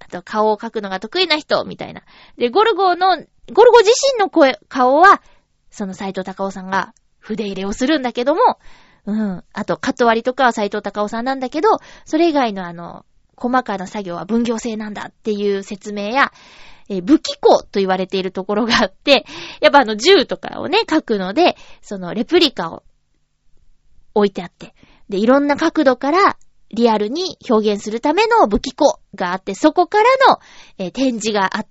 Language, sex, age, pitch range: Japanese, female, 20-39, 200-315 Hz